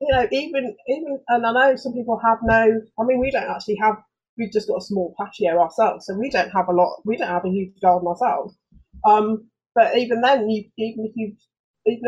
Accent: British